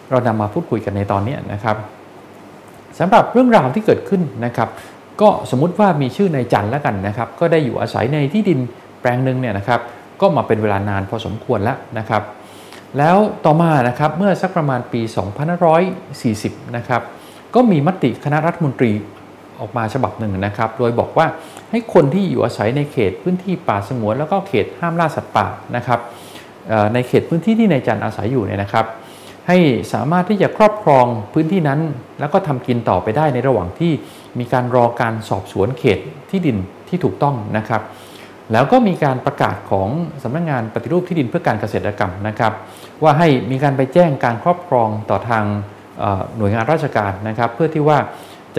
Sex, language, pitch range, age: male, Thai, 110-160 Hz, 20-39